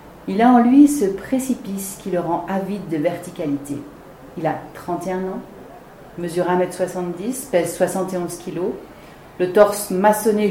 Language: French